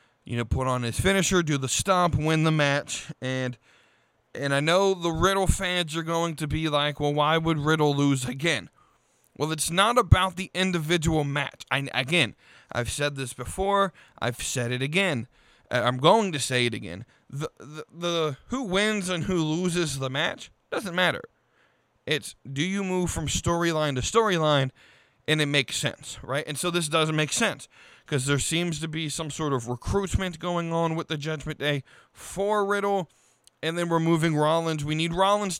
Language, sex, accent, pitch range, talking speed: English, male, American, 140-175 Hz, 185 wpm